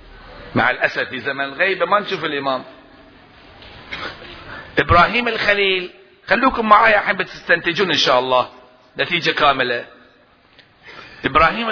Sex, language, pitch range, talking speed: male, Arabic, 160-220 Hz, 100 wpm